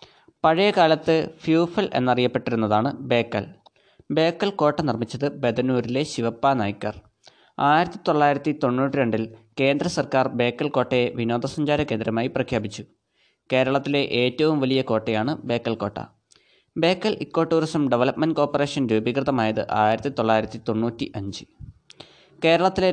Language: Malayalam